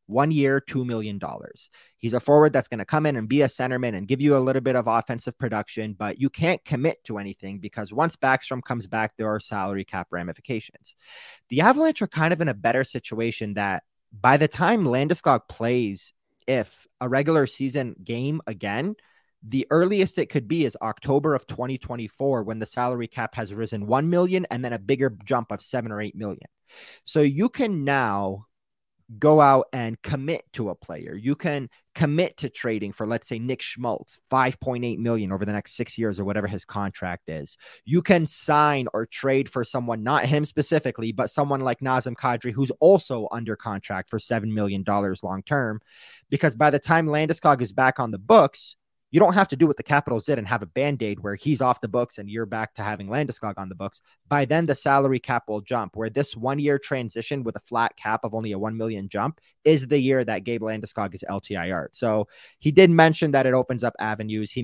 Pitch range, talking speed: 110-140 Hz, 205 wpm